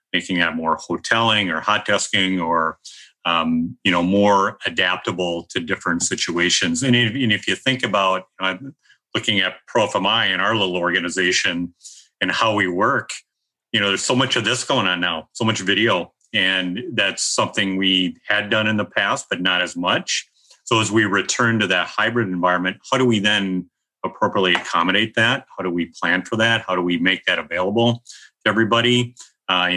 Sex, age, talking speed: male, 40-59, 185 wpm